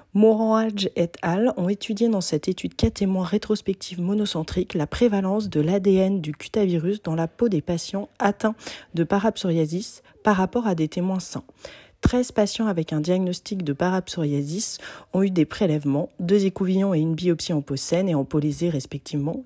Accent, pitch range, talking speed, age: French, 165-205 Hz, 175 wpm, 30-49